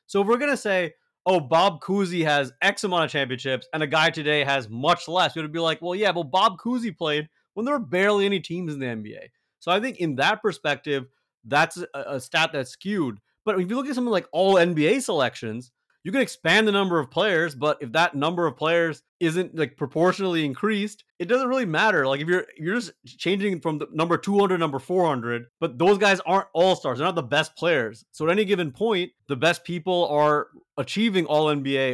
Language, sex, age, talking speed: English, male, 30-49, 215 wpm